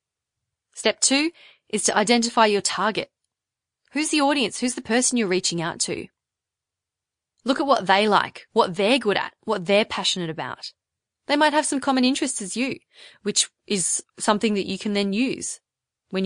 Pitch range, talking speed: 175-250 Hz, 175 wpm